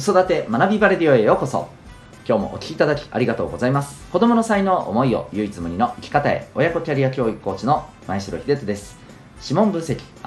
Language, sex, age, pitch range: Japanese, male, 40-59, 95-155 Hz